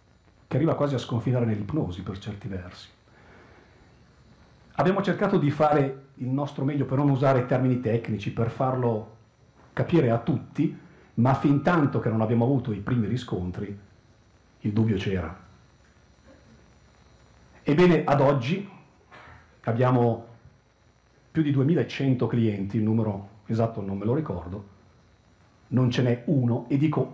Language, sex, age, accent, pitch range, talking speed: Italian, male, 40-59, native, 105-130 Hz, 135 wpm